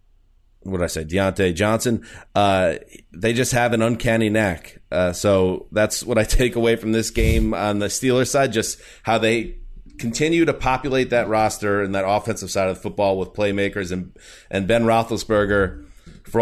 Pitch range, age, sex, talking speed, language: 95-115 Hz, 30-49, male, 180 wpm, English